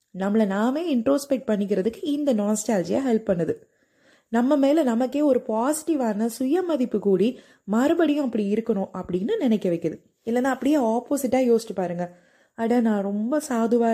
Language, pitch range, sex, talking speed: Tamil, 205-275 Hz, female, 55 wpm